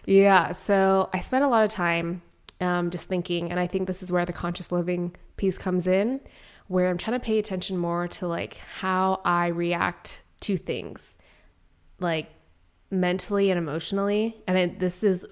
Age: 20-39